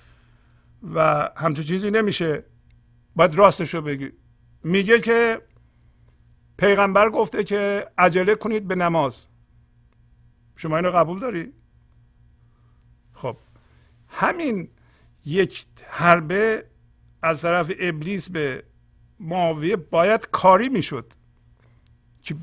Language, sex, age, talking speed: Persian, male, 50-69, 90 wpm